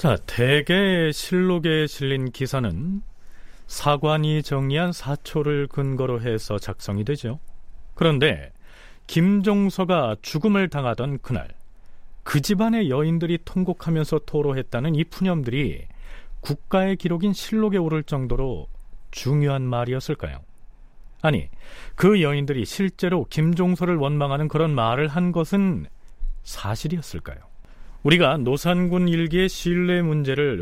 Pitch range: 120-170 Hz